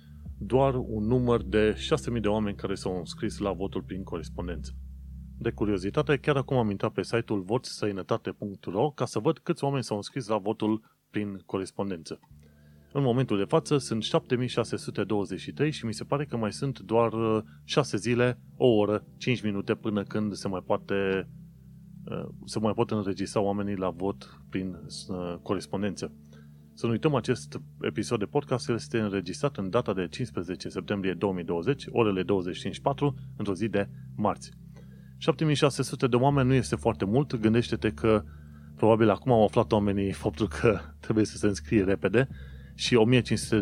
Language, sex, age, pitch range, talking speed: Romanian, male, 30-49, 95-125 Hz, 150 wpm